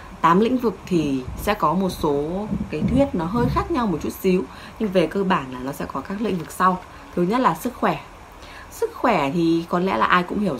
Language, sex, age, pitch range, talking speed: Vietnamese, female, 20-39, 170-230 Hz, 245 wpm